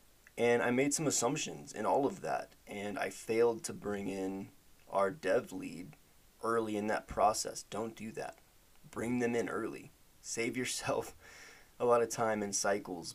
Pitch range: 100-135 Hz